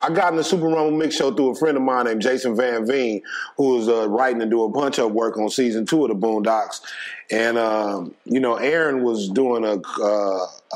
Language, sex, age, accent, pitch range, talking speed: English, male, 30-49, American, 115-140 Hz, 235 wpm